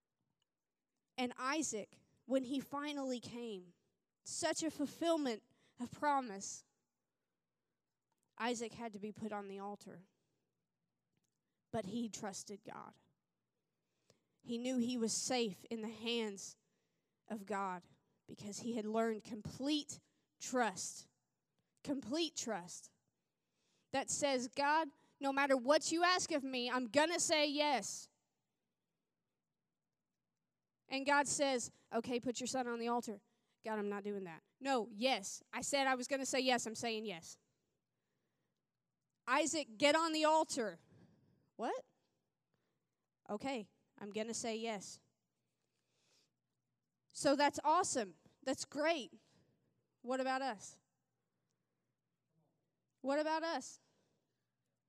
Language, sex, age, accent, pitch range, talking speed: English, female, 20-39, American, 215-280 Hz, 115 wpm